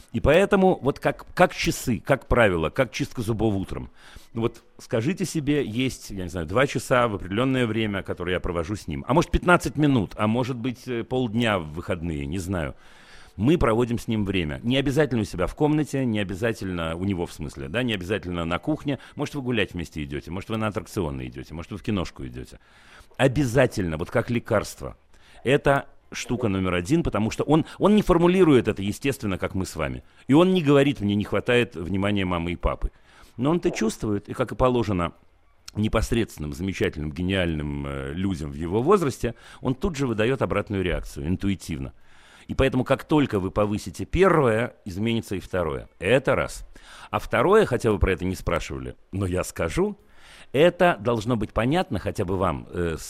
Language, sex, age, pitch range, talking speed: Russian, male, 40-59, 90-130 Hz, 185 wpm